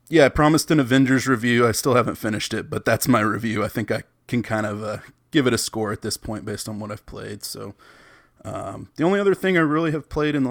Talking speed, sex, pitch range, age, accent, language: 265 wpm, male, 105-125 Hz, 20-39, American, English